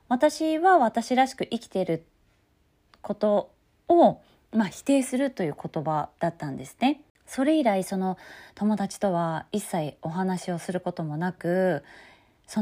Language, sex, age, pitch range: Japanese, female, 20-39, 170-250 Hz